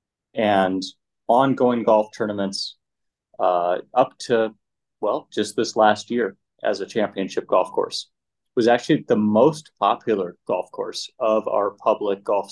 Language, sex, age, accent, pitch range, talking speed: English, male, 30-49, American, 110-145 Hz, 140 wpm